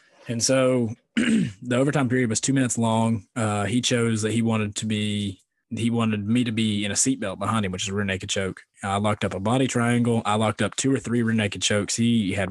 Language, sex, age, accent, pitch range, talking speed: English, male, 20-39, American, 105-120 Hz, 240 wpm